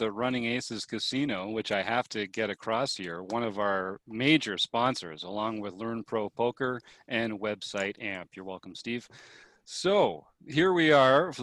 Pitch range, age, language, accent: 100-130 Hz, 40-59, English, American